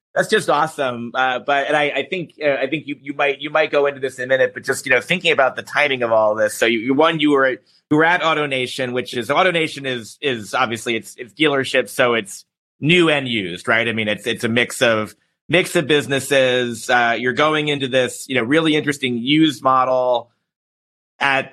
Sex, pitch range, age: male, 120-150 Hz, 30-49